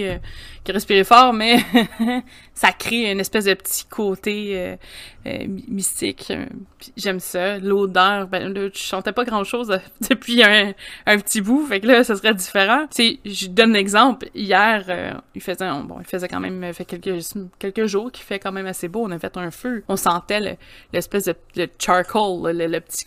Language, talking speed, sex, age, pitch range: French, 190 wpm, female, 20-39, 185-215 Hz